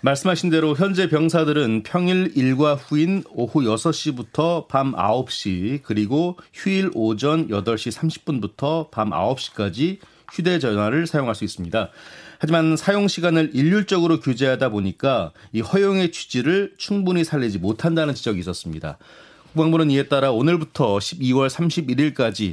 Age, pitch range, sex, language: 30-49, 115-165 Hz, male, Korean